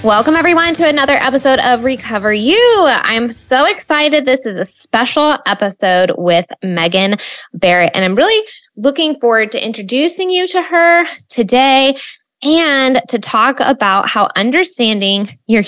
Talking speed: 140 wpm